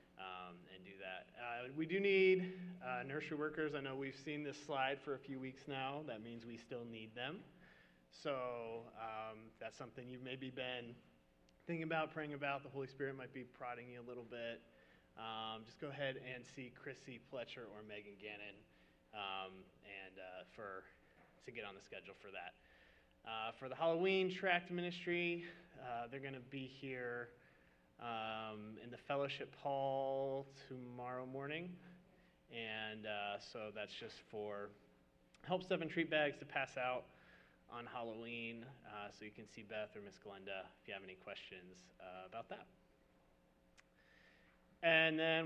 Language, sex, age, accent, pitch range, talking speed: English, male, 30-49, American, 105-145 Hz, 165 wpm